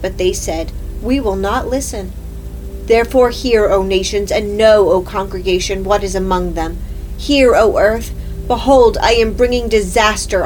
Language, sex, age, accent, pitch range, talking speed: English, female, 40-59, American, 185-230 Hz, 155 wpm